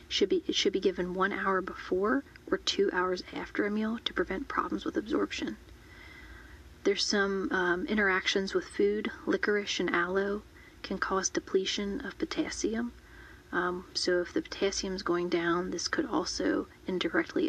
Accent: American